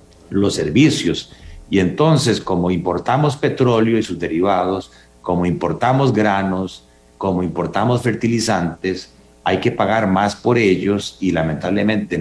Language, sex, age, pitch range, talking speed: Spanish, male, 50-69, 85-110 Hz, 120 wpm